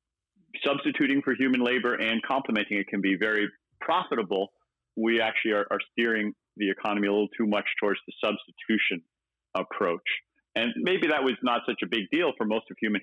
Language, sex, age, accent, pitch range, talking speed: English, male, 40-59, American, 100-115 Hz, 180 wpm